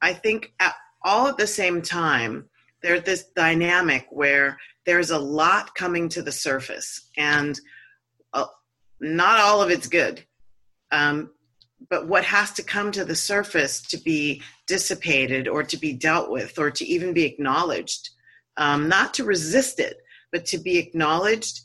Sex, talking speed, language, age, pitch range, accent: female, 155 wpm, English, 30-49, 150-180 Hz, American